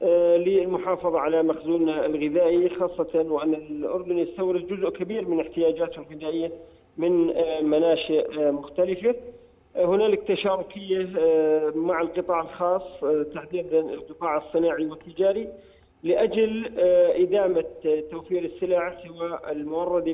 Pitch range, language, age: 165-195 Hz, Arabic, 40-59